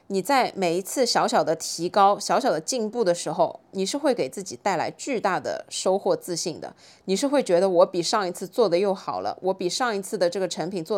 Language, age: Chinese, 20-39